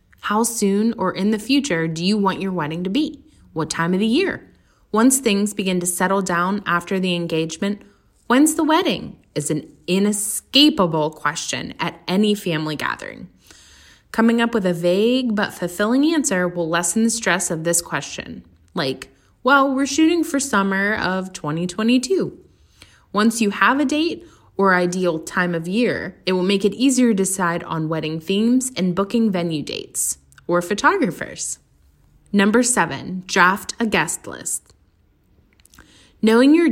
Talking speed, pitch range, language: 155 wpm, 170-230 Hz, English